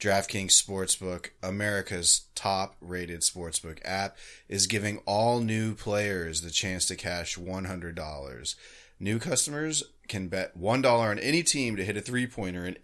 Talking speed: 135 wpm